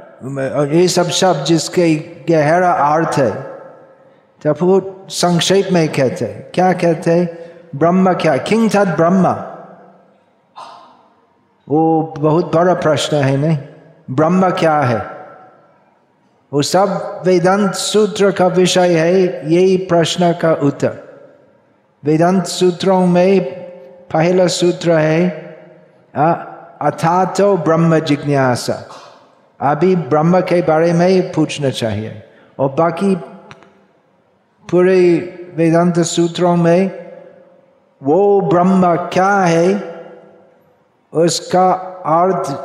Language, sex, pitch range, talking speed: Hindi, male, 155-180 Hz, 100 wpm